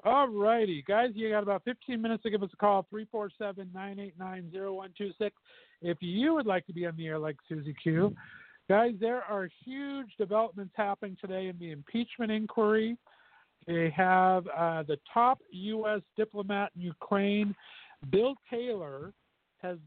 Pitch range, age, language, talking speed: 175-215 Hz, 50-69, English, 150 wpm